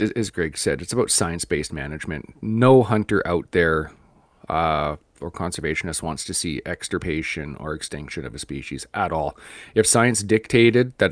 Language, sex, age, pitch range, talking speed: English, male, 30-49, 85-110 Hz, 155 wpm